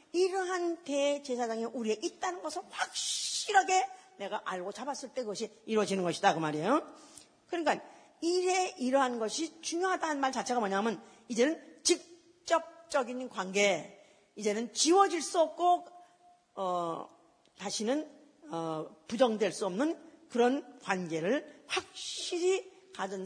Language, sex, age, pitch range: Korean, female, 40-59, 205-320 Hz